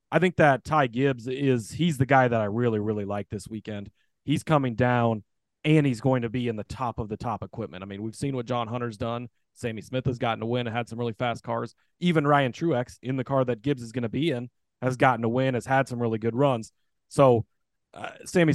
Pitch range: 115-135 Hz